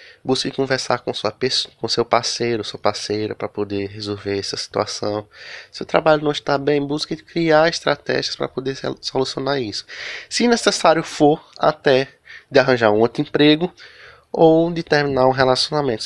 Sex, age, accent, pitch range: male, 20-39, Brazilian, 110-140 Hz